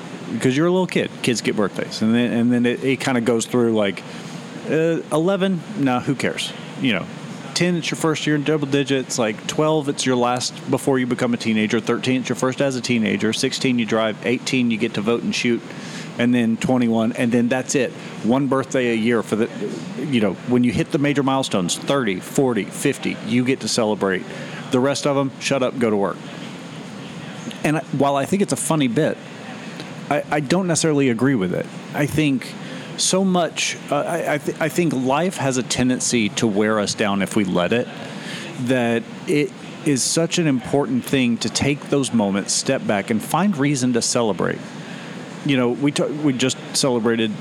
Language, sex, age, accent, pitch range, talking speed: English, male, 40-59, American, 120-155 Hz, 200 wpm